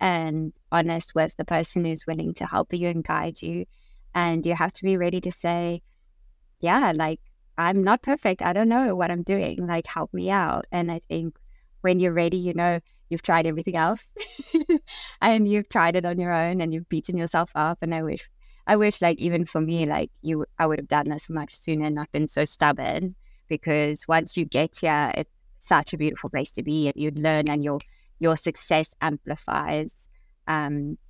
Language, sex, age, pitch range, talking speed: English, female, 20-39, 155-180 Hz, 200 wpm